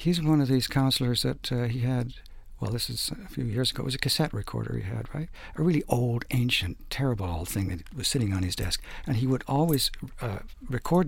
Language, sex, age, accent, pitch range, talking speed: English, male, 60-79, American, 120-145 Hz, 235 wpm